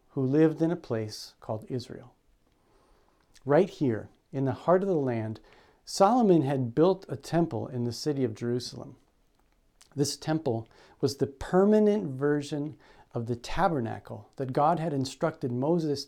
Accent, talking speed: American, 145 wpm